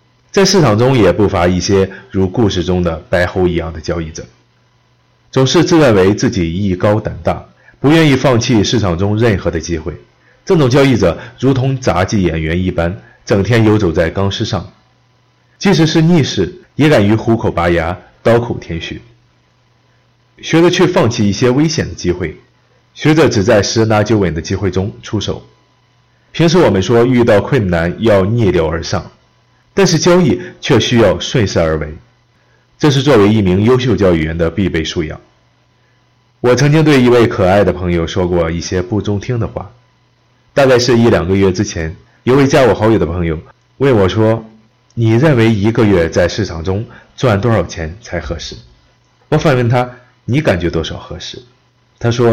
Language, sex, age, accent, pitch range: Chinese, male, 30-49, native, 90-125 Hz